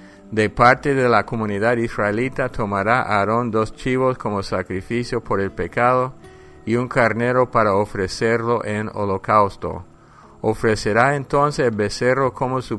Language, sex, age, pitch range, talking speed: English, male, 50-69, 100-120 Hz, 130 wpm